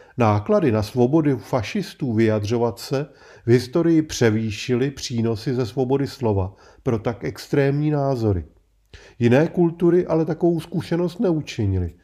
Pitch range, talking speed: 105-145 Hz, 115 wpm